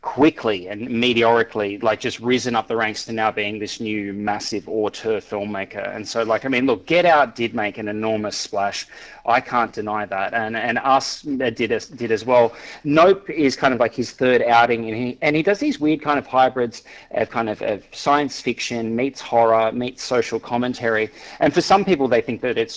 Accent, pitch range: Australian, 110-130 Hz